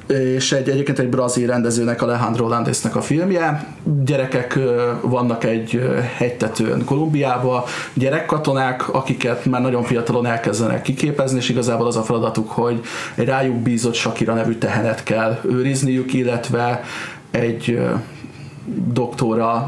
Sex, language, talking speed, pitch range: male, Hungarian, 120 wpm, 115-135 Hz